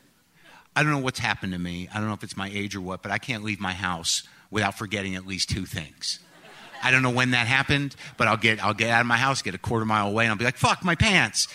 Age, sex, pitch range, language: 50-69, male, 100-130 Hz, English